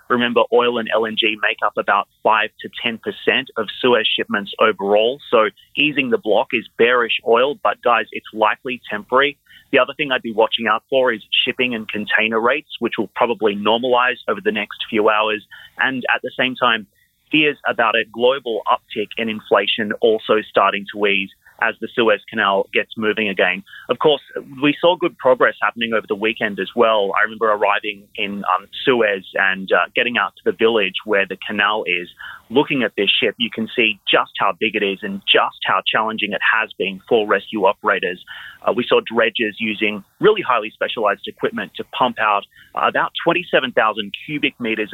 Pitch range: 105-125 Hz